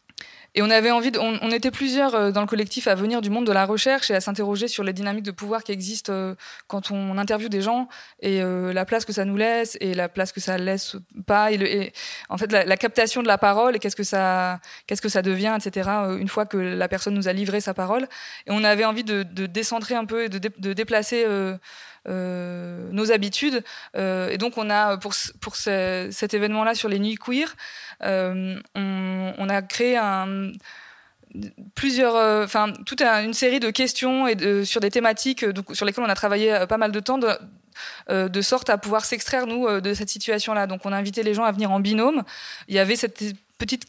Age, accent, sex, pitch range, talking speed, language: 20-39, French, female, 195-230 Hz, 225 wpm, French